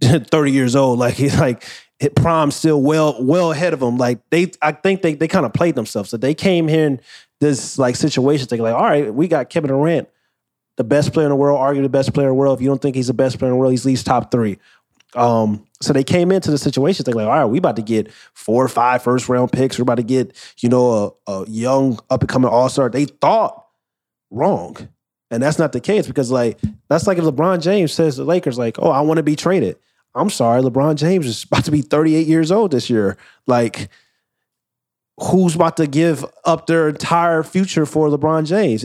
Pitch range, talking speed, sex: 125-155 Hz, 230 wpm, male